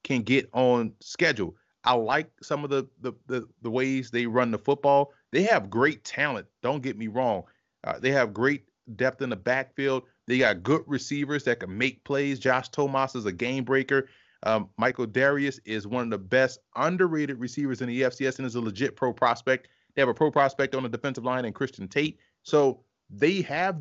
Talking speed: 205 wpm